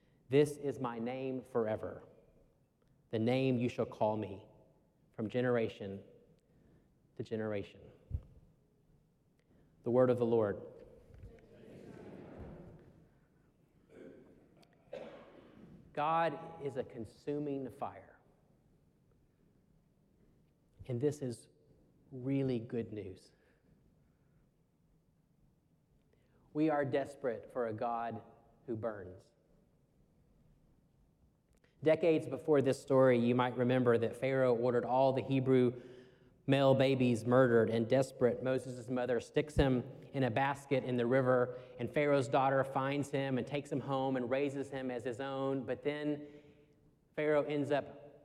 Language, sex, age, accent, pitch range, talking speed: English, male, 40-59, American, 120-145 Hz, 110 wpm